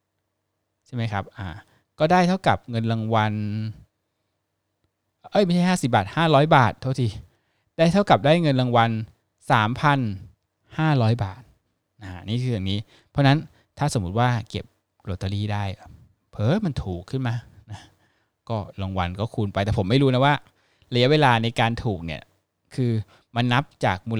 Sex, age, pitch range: male, 20-39, 100-130 Hz